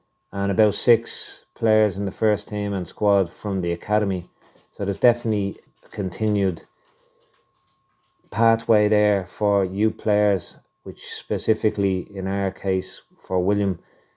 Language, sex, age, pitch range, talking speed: English, male, 30-49, 95-110 Hz, 125 wpm